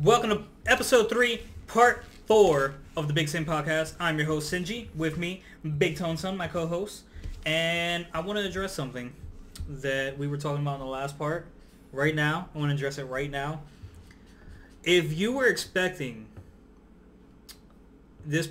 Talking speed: 165 wpm